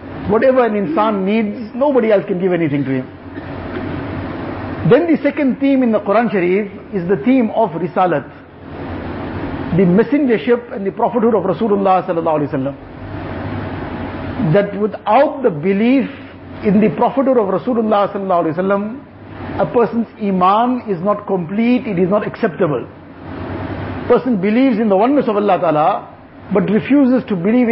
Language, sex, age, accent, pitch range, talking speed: English, male, 50-69, Indian, 190-240 Hz, 135 wpm